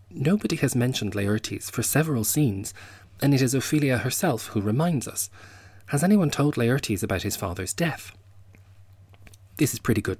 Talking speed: 160 wpm